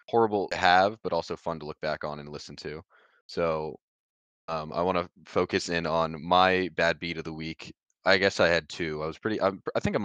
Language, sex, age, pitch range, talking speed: English, male, 20-39, 80-95 Hz, 235 wpm